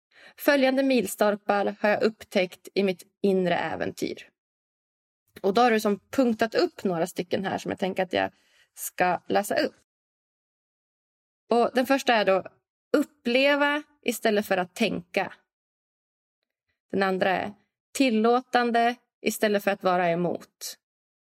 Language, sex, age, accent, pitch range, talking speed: English, female, 20-39, Swedish, 195-230 Hz, 125 wpm